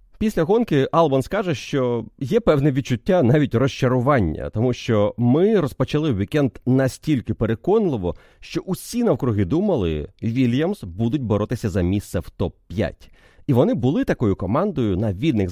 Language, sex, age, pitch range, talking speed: Ukrainian, male, 30-49, 105-155 Hz, 135 wpm